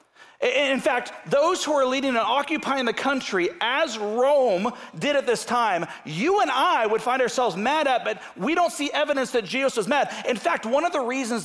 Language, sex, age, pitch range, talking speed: English, male, 40-59, 210-295 Hz, 205 wpm